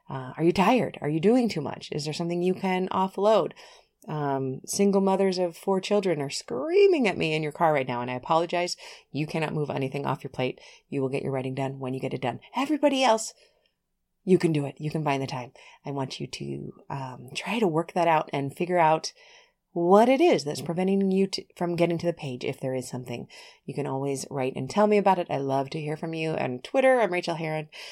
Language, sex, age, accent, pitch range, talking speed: English, female, 30-49, American, 140-195 Hz, 240 wpm